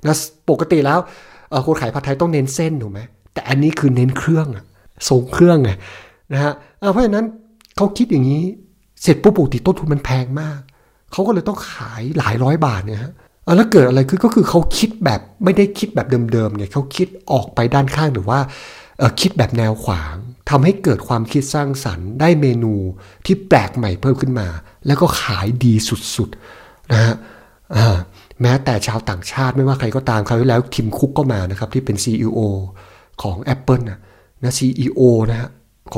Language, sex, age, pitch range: Thai, male, 60-79, 110-150 Hz